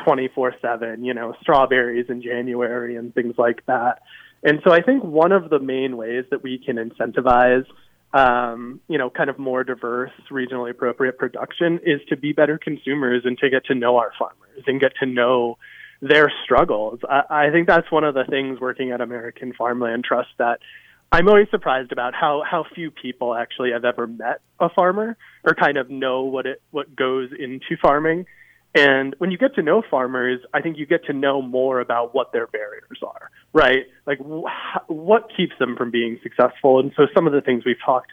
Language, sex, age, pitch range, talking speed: English, male, 20-39, 125-150 Hz, 195 wpm